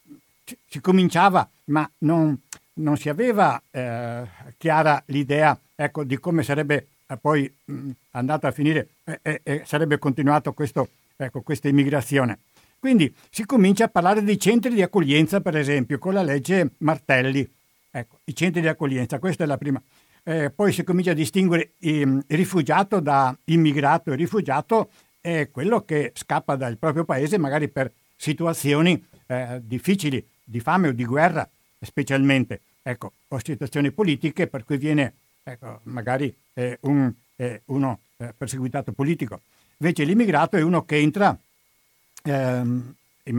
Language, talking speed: Italian, 145 wpm